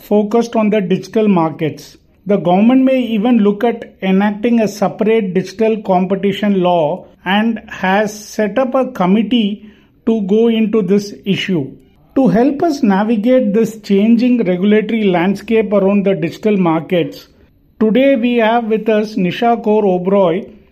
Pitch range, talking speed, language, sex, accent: 190-235 Hz, 140 wpm, English, male, Indian